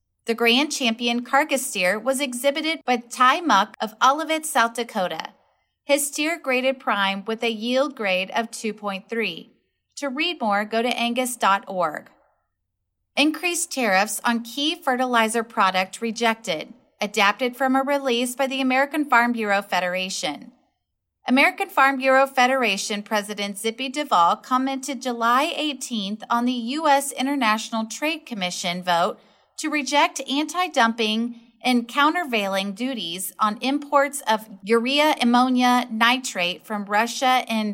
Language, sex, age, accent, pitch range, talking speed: English, female, 30-49, American, 210-275 Hz, 125 wpm